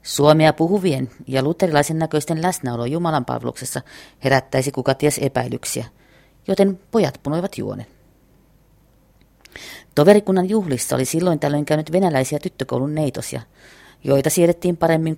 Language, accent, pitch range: Finnish, native, 145-180 Hz